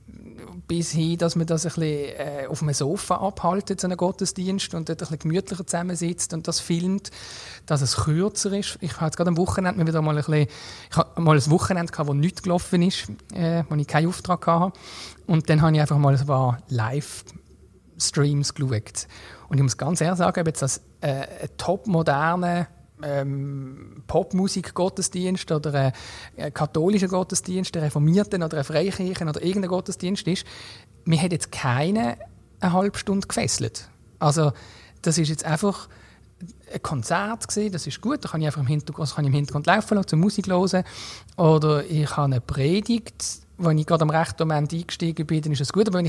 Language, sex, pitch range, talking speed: German, male, 145-180 Hz, 185 wpm